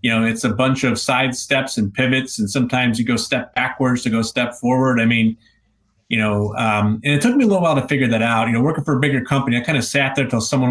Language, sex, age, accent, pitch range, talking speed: English, male, 30-49, American, 115-140 Hz, 275 wpm